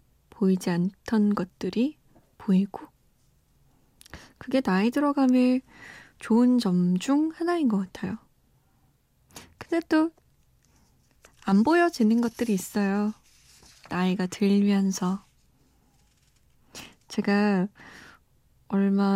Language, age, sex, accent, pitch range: Korean, 20-39, female, native, 195-275 Hz